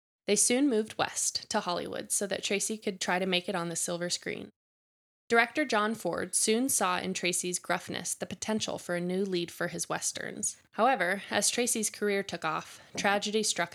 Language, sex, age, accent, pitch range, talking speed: English, female, 20-39, American, 175-210 Hz, 190 wpm